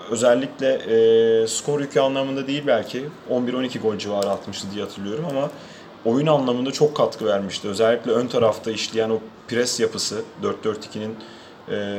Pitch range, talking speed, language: 110-150 Hz, 140 wpm, Turkish